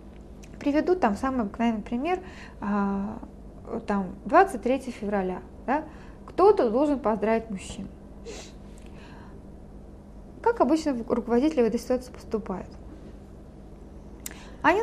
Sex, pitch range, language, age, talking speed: female, 215-320 Hz, Russian, 20-39, 85 wpm